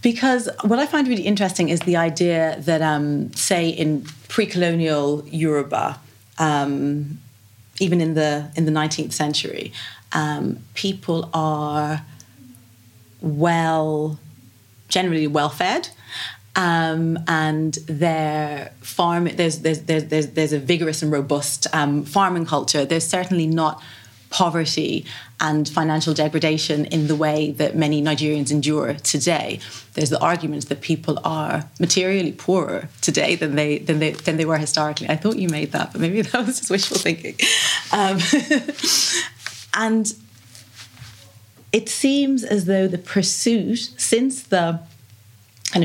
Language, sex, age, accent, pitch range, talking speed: English, female, 30-49, British, 145-175 Hz, 130 wpm